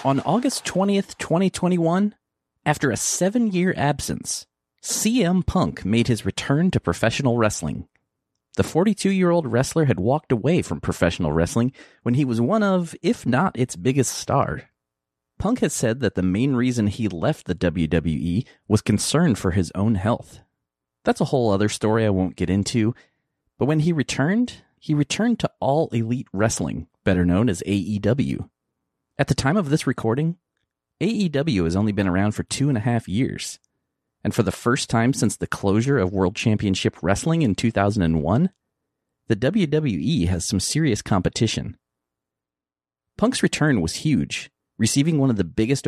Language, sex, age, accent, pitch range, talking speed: English, male, 30-49, American, 95-150 Hz, 160 wpm